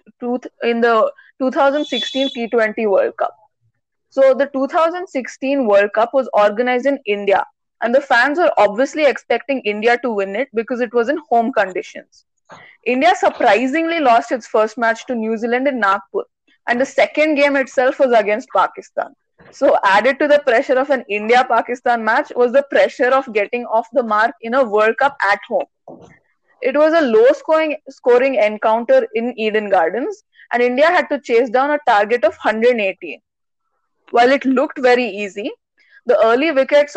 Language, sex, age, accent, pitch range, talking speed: English, female, 20-39, Indian, 230-285 Hz, 165 wpm